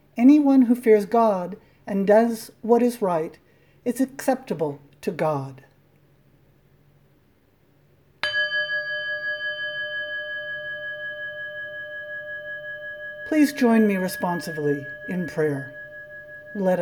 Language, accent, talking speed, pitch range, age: English, American, 70 wpm, 150-235 Hz, 60-79